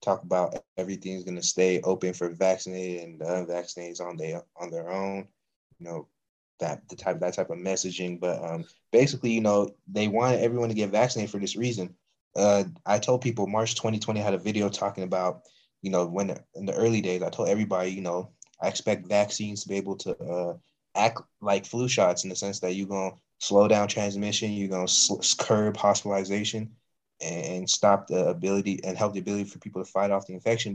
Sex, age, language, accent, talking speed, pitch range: male, 20-39, English, American, 205 wpm, 95-110 Hz